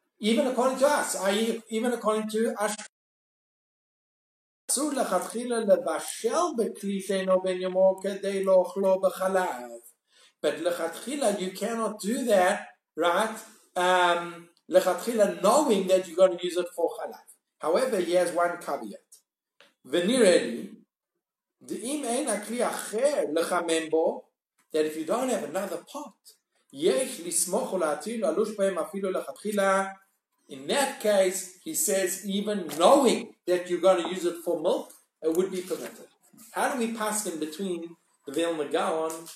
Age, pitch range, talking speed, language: 50-69, 180-225 Hz, 125 wpm, English